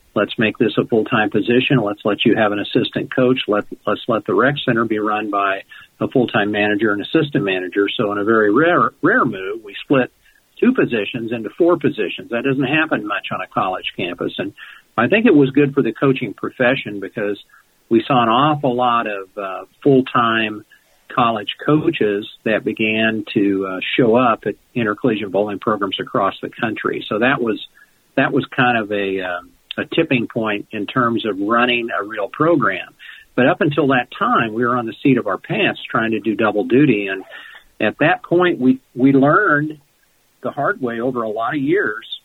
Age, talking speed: 50-69, 195 wpm